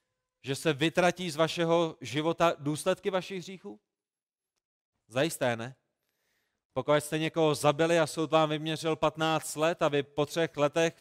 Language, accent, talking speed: Czech, native, 140 wpm